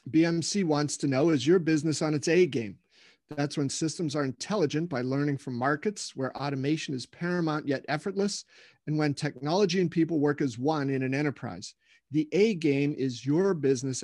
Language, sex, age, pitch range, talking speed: English, male, 40-59, 135-160 Hz, 175 wpm